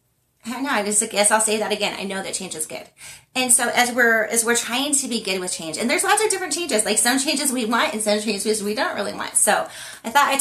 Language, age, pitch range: English, 30-49, 200-250 Hz